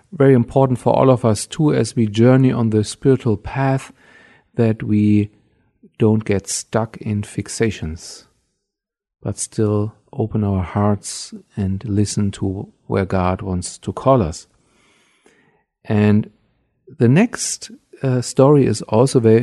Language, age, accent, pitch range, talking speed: English, 50-69, German, 105-135 Hz, 135 wpm